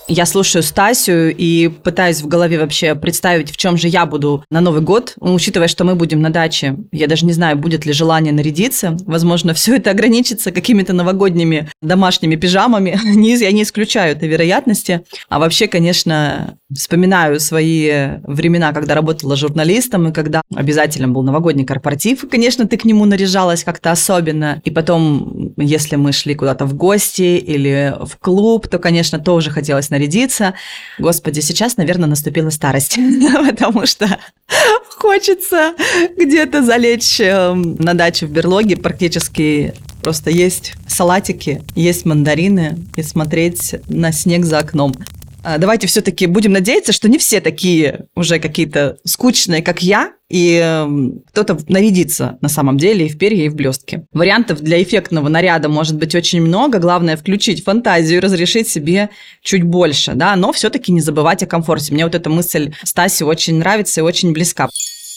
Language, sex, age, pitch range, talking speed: Russian, female, 30-49, 155-195 Hz, 155 wpm